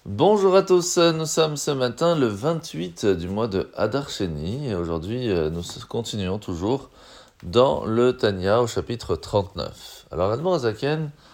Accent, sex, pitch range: French, male, 100-145 Hz